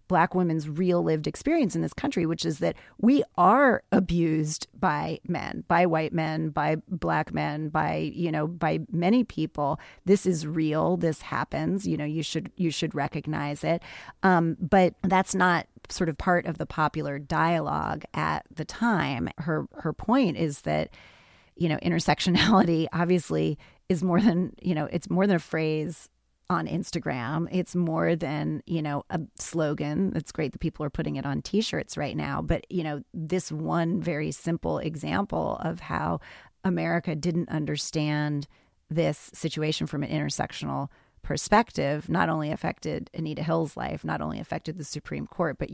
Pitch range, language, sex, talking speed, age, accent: 150-175 Hz, English, female, 165 wpm, 30-49, American